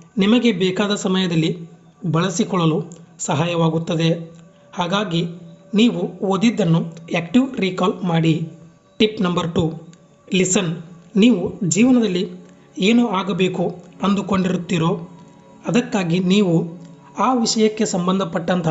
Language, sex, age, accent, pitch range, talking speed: Kannada, male, 30-49, native, 170-205 Hz, 80 wpm